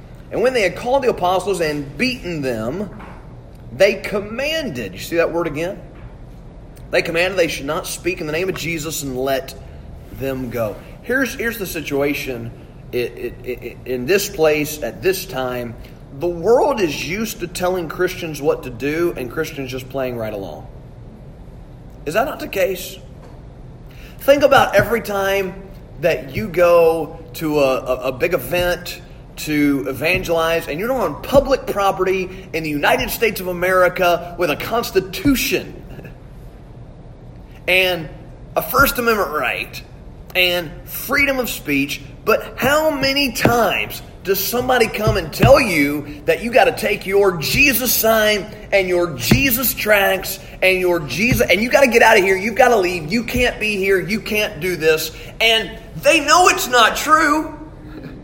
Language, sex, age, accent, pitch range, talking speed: English, male, 30-49, American, 145-215 Hz, 155 wpm